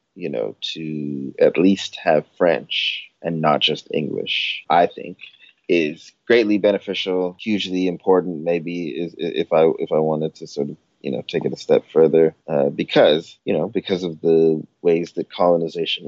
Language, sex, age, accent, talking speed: English, male, 30-49, American, 170 wpm